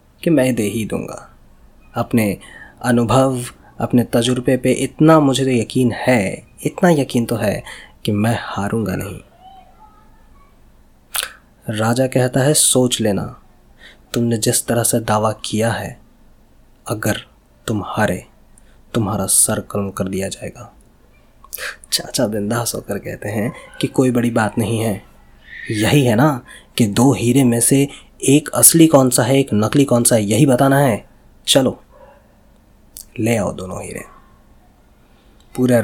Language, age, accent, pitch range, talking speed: Hindi, 20-39, native, 105-125 Hz, 135 wpm